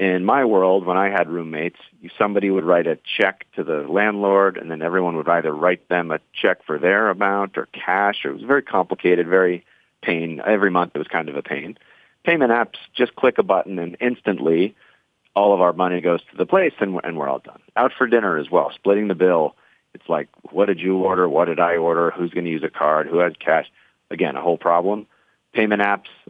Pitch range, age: 85-105 Hz, 40-59